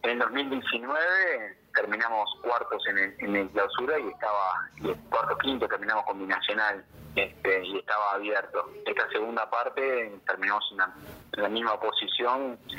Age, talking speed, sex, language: 30-49, 145 wpm, male, Spanish